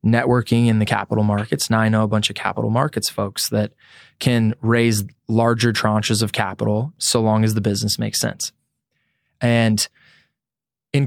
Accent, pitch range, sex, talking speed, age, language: American, 110-125 Hz, male, 165 wpm, 20-39, English